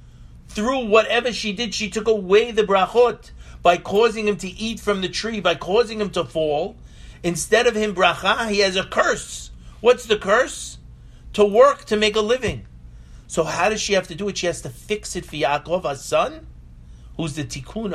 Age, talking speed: 50-69, 195 wpm